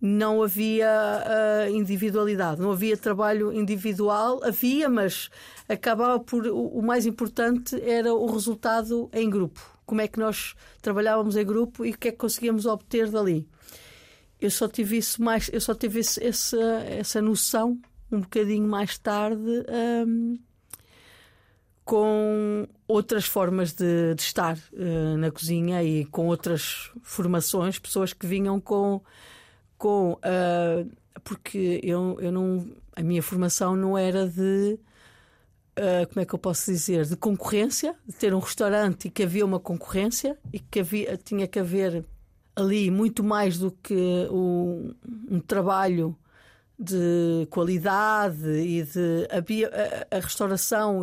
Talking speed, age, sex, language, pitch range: 135 wpm, 50-69, female, Portuguese, 180-220 Hz